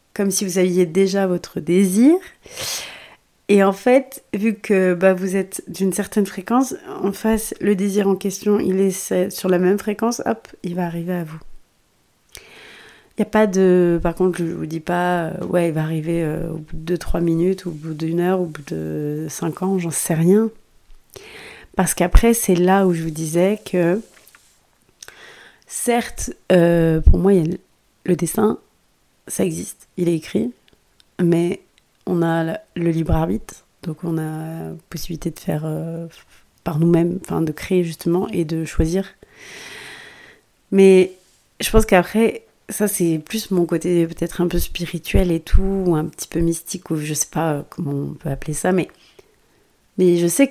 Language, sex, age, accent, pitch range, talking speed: French, female, 30-49, French, 165-195 Hz, 175 wpm